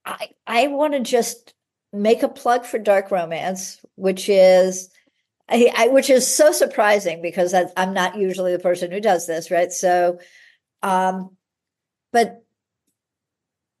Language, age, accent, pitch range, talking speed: English, 50-69, American, 180-235 Hz, 145 wpm